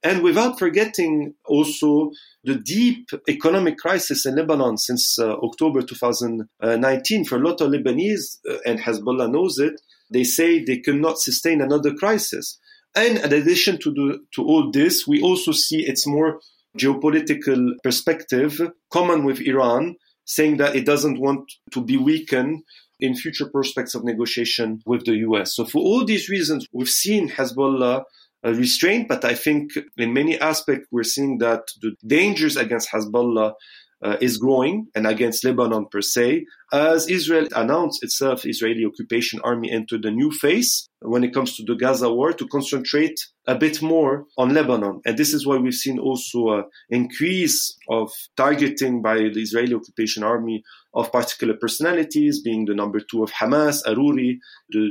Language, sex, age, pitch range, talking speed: English, male, 40-59, 120-160 Hz, 160 wpm